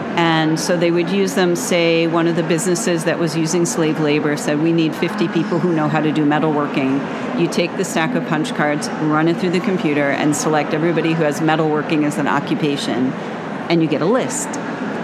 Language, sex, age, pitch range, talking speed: English, female, 40-59, 160-210 Hz, 210 wpm